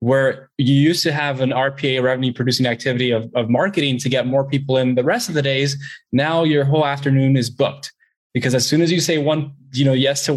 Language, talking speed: English, 230 wpm